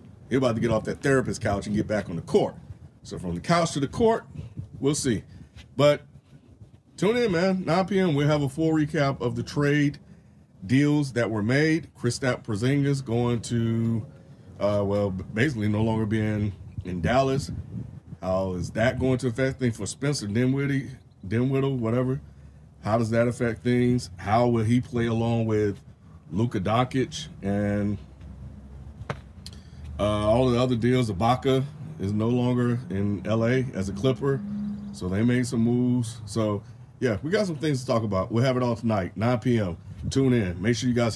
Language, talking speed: English, 175 wpm